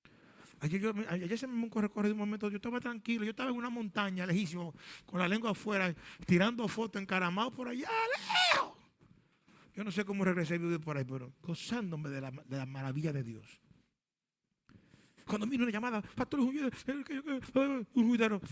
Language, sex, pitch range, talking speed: Spanish, male, 175-225 Hz, 170 wpm